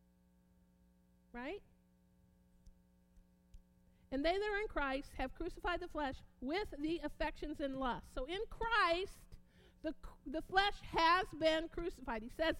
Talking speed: 130 wpm